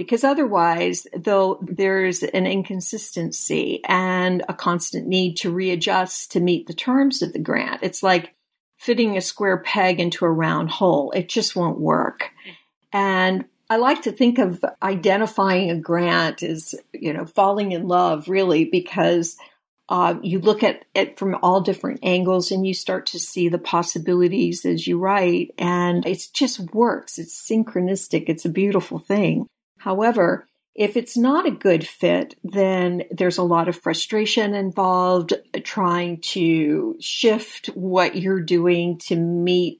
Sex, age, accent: female, 50-69, American